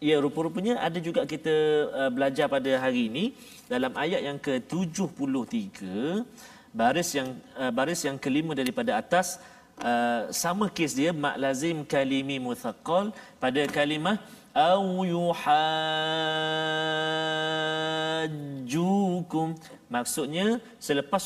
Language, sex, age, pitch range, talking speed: Malayalam, male, 40-59, 145-245 Hz, 100 wpm